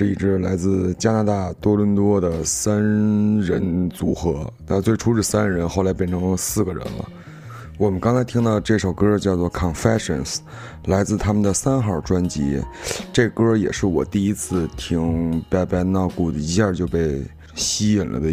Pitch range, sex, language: 85-105 Hz, male, Chinese